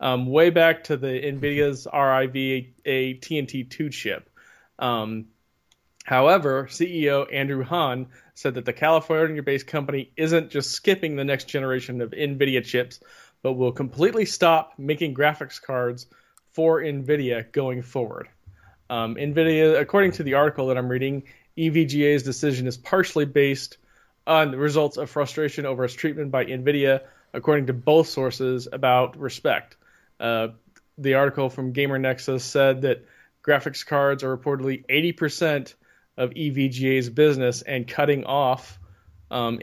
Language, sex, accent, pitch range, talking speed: English, male, American, 125-145 Hz, 135 wpm